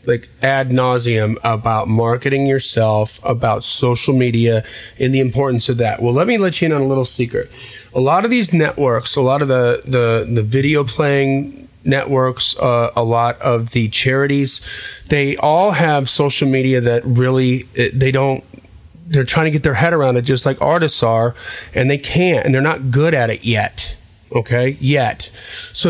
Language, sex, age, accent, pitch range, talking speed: English, male, 30-49, American, 120-150 Hz, 180 wpm